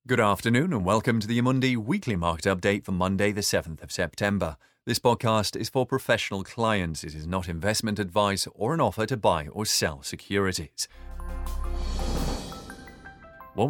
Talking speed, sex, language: 160 wpm, male, English